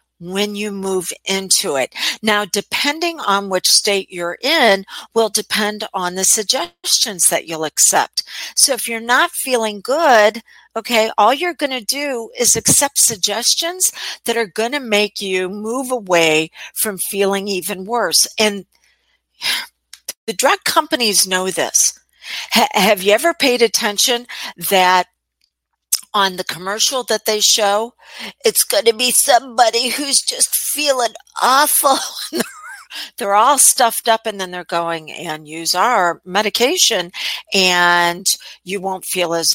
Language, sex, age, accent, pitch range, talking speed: English, female, 50-69, American, 185-240 Hz, 140 wpm